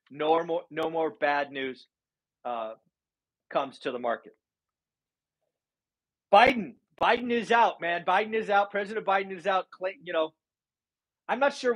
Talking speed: 150 wpm